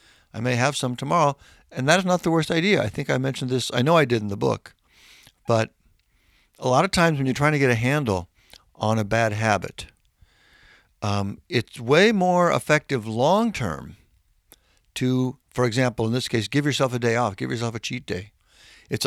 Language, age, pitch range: English, 60-79, 100-130 Hz